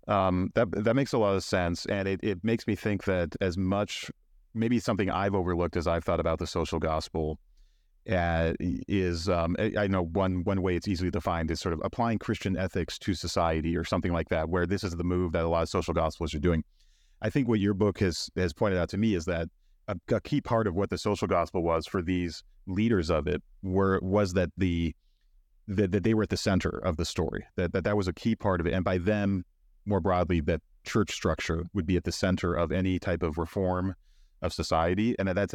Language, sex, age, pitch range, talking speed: English, male, 30-49, 85-95 Hz, 235 wpm